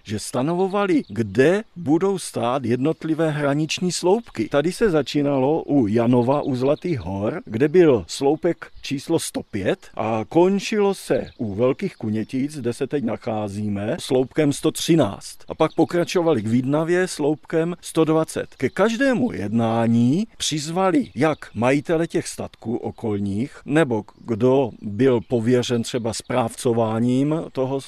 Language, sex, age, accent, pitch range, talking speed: Czech, male, 50-69, native, 125-170 Hz, 120 wpm